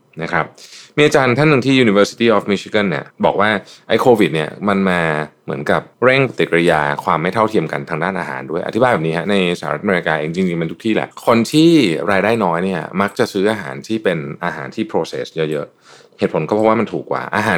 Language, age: Thai, 20-39